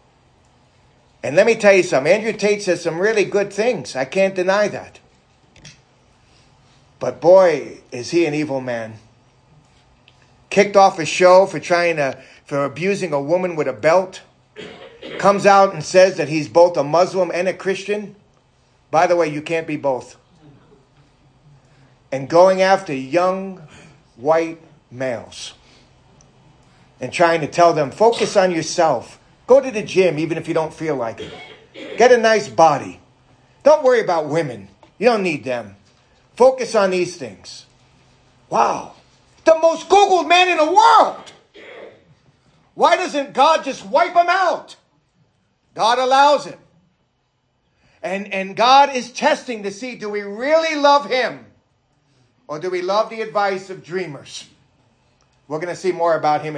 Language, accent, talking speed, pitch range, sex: English, American, 150 wpm, 140-210 Hz, male